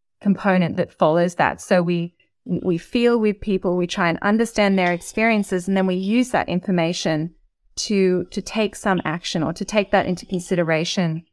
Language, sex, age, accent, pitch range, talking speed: English, female, 30-49, Australian, 175-210 Hz, 175 wpm